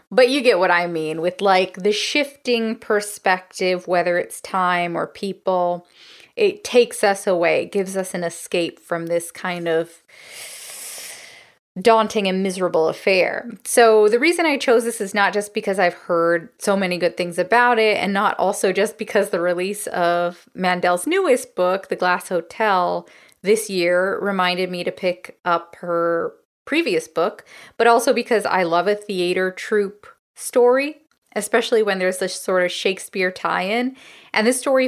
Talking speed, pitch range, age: 160 wpm, 175-225 Hz, 20-39